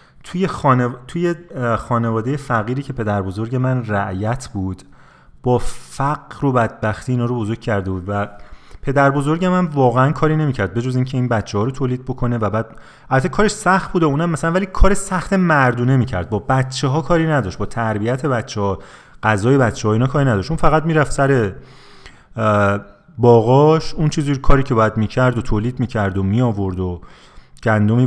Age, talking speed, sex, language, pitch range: 30-49, 175 wpm, male, Persian, 110-150 Hz